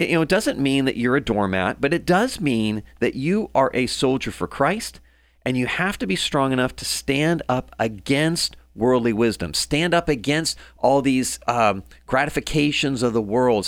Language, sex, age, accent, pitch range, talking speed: English, male, 40-59, American, 105-150 Hz, 190 wpm